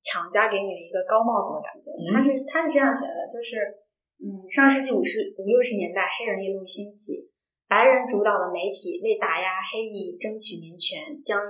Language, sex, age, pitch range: Chinese, female, 10-29, 190-275 Hz